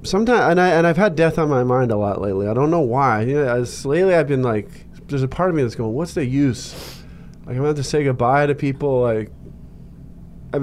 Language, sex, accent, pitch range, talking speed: English, male, American, 115-150 Hz, 250 wpm